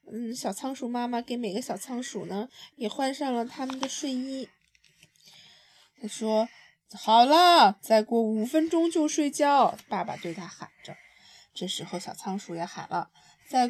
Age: 20-39